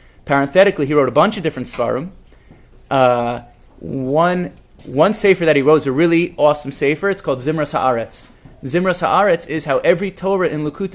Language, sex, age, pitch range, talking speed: English, male, 30-49, 125-160 Hz, 175 wpm